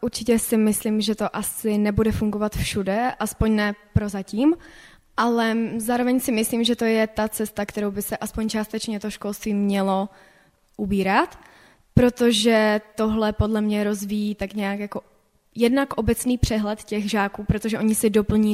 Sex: female